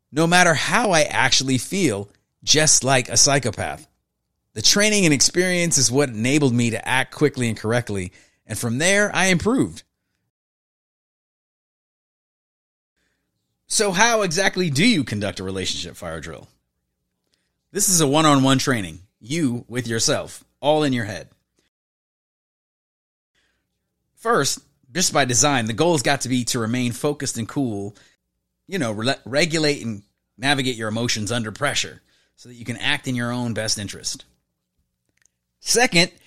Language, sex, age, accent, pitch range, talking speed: English, male, 30-49, American, 110-160 Hz, 140 wpm